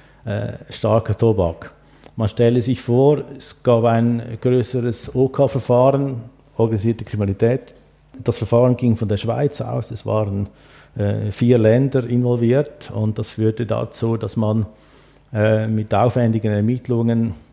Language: German